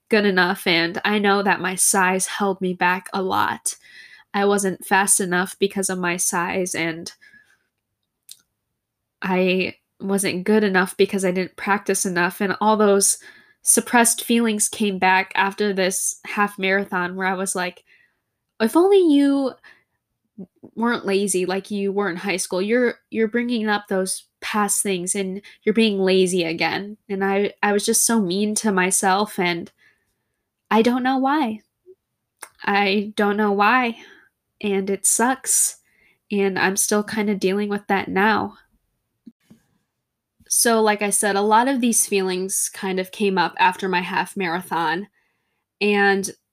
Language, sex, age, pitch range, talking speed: English, female, 10-29, 185-215 Hz, 150 wpm